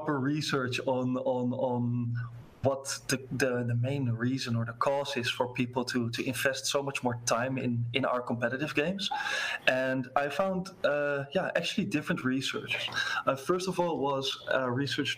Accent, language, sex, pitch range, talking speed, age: Dutch, English, male, 120-140 Hz, 170 wpm, 20-39